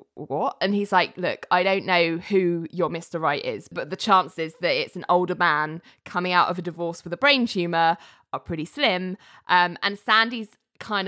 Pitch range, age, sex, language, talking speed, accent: 165-190 Hz, 20-39, female, English, 200 wpm, British